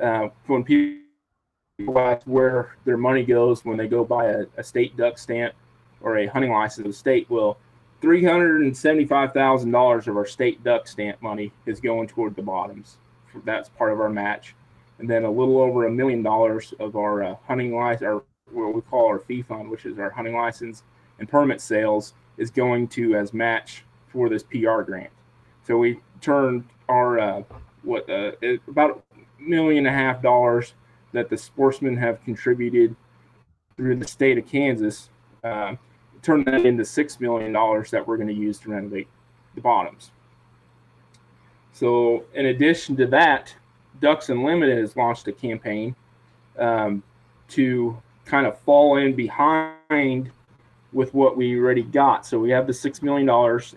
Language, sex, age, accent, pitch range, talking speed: English, male, 20-39, American, 110-130 Hz, 170 wpm